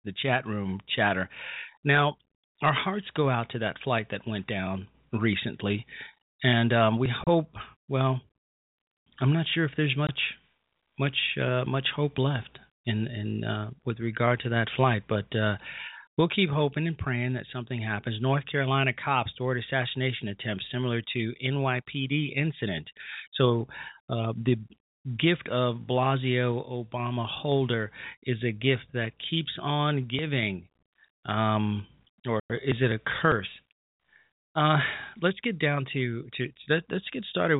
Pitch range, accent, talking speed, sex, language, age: 110-135 Hz, American, 145 wpm, male, English, 40-59